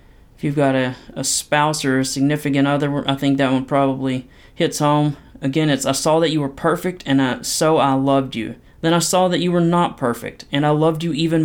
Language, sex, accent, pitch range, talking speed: English, male, American, 130-150 Hz, 225 wpm